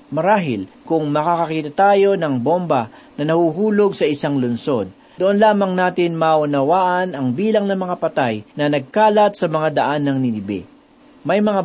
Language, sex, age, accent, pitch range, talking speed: Filipino, male, 40-59, native, 140-185 Hz, 150 wpm